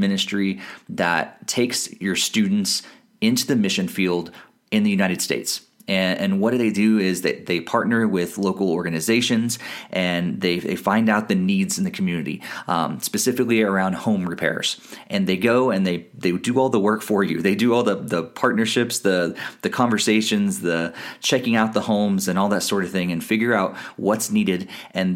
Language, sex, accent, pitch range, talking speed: English, male, American, 95-120 Hz, 190 wpm